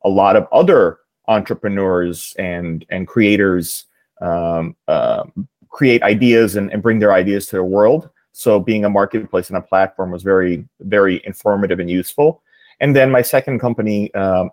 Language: English